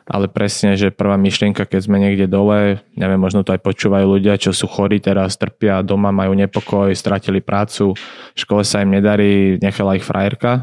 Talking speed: 185 wpm